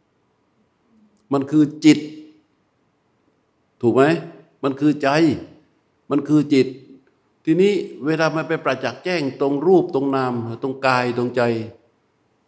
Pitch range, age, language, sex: 120-155 Hz, 60-79, Thai, male